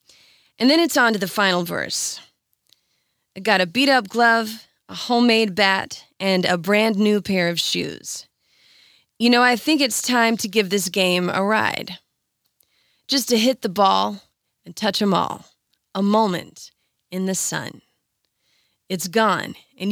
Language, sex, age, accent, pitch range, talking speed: English, female, 20-39, American, 190-240 Hz, 155 wpm